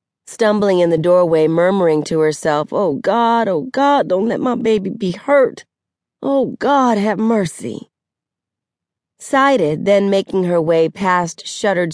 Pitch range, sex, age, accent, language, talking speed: 170-215 Hz, female, 40-59, American, English, 140 wpm